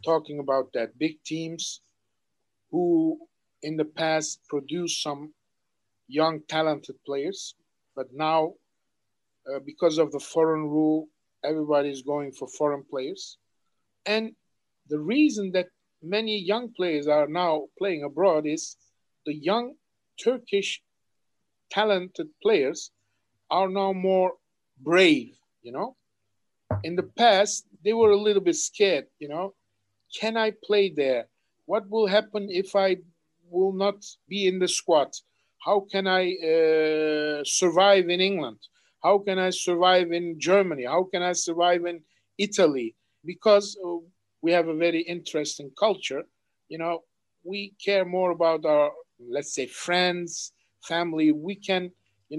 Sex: male